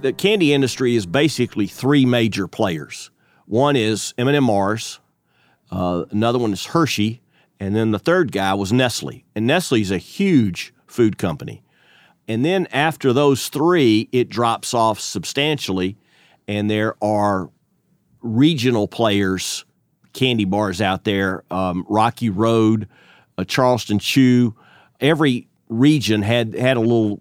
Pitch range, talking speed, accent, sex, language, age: 105-130 Hz, 135 wpm, American, male, English, 40-59